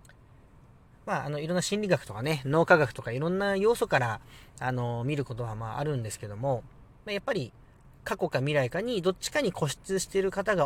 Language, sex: Japanese, male